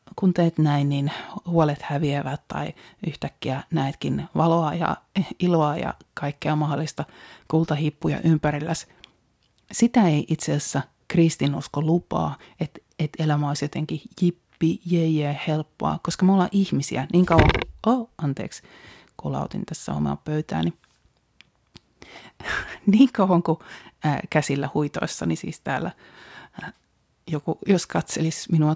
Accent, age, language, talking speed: native, 30-49, Finnish, 110 wpm